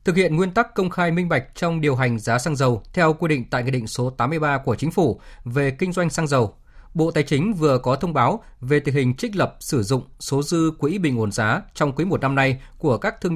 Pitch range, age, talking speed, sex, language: 125-170 Hz, 20-39, 260 wpm, male, Vietnamese